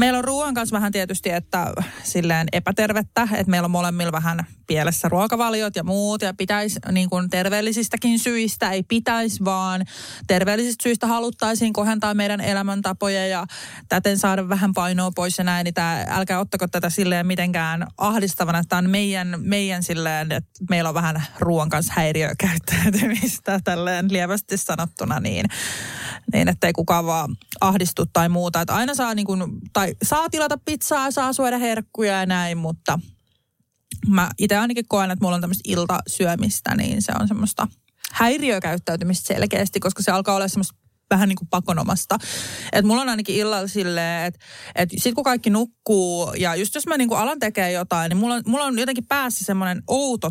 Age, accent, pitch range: 20-39, native, 175-215 Hz